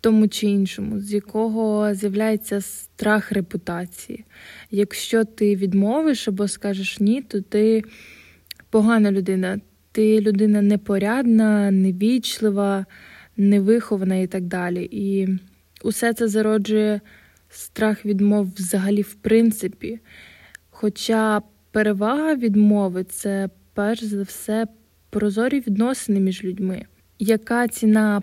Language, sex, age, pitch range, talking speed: Ukrainian, female, 20-39, 200-220 Hz, 105 wpm